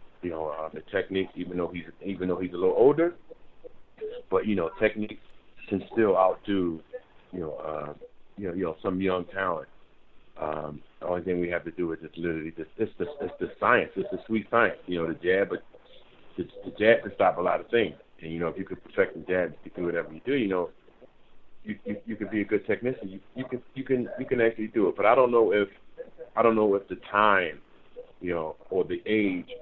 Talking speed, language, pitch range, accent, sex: 235 wpm, English, 85-125 Hz, American, male